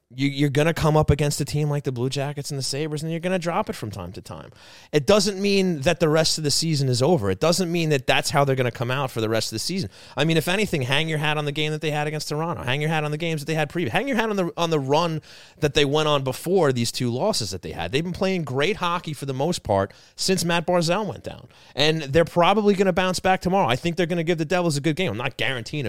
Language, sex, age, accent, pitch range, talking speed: English, male, 30-49, American, 115-165 Hz, 310 wpm